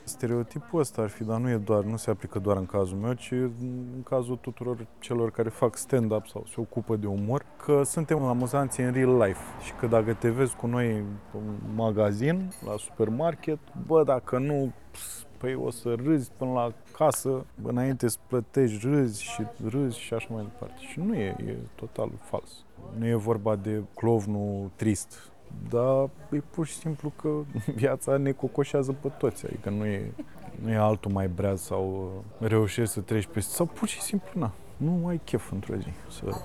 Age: 20-39